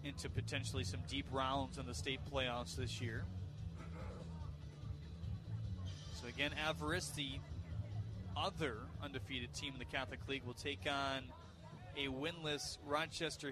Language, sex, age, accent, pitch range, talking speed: English, male, 30-49, American, 125-165 Hz, 125 wpm